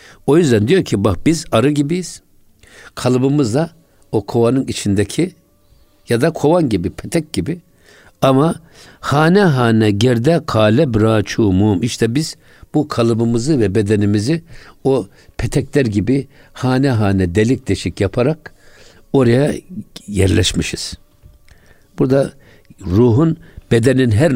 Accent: native